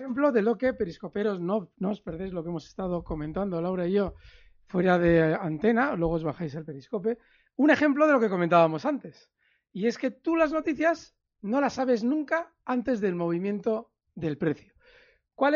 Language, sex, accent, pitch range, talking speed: Spanish, male, Spanish, 180-250 Hz, 185 wpm